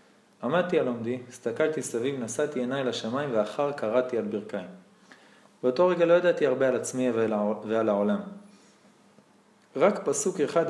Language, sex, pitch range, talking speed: Hebrew, male, 125-205 Hz, 140 wpm